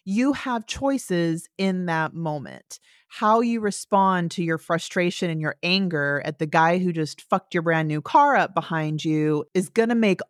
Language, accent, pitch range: English, American, 155-190 Hz